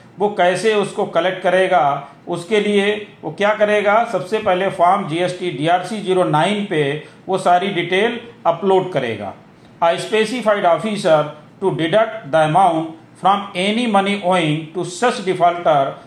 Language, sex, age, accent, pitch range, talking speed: Hindi, male, 40-59, native, 160-205 Hz, 135 wpm